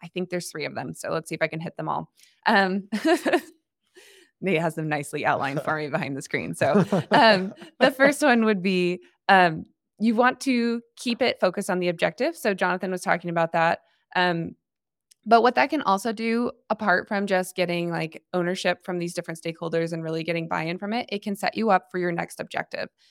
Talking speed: 210 wpm